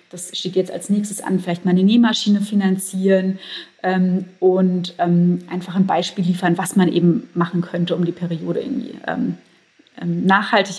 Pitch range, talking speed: 185-210 Hz, 160 wpm